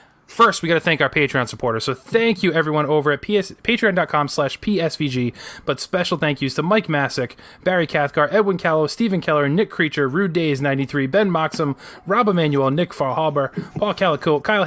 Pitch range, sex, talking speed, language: 135-180 Hz, male, 180 wpm, English